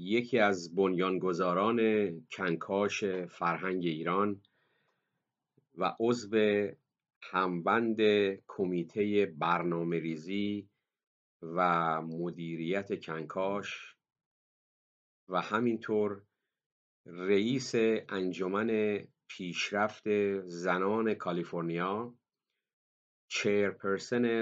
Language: Persian